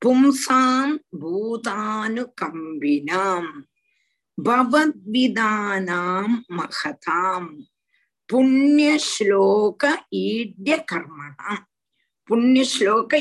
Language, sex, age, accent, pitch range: Tamil, female, 50-69, native, 200-285 Hz